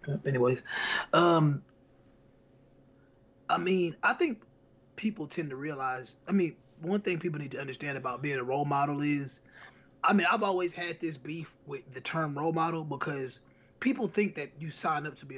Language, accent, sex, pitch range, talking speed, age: English, American, male, 135-185 Hz, 175 wpm, 20-39